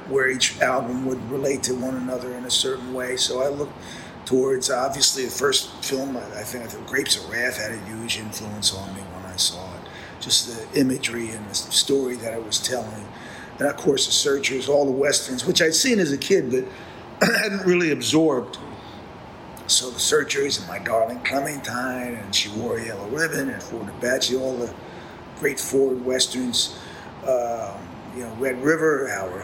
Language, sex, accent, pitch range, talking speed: English, male, American, 120-150 Hz, 190 wpm